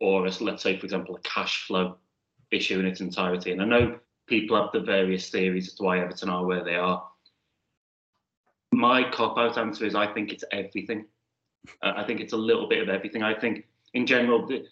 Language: English